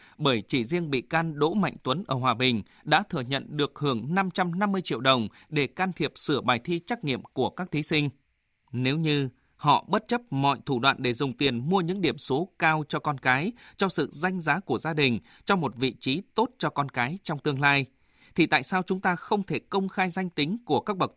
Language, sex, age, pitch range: Vietnamese, male, 20-39, 130-180 Hz